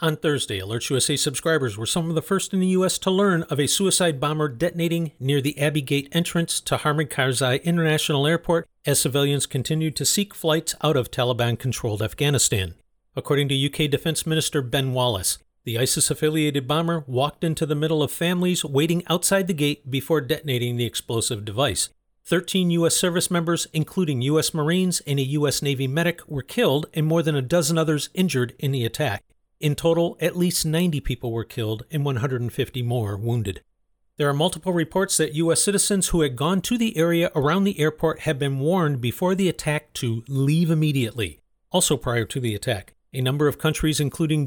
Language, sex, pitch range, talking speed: English, male, 130-165 Hz, 185 wpm